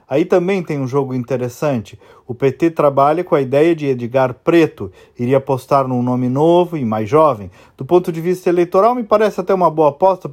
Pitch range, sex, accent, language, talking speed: 135-185 Hz, male, Brazilian, Portuguese, 200 wpm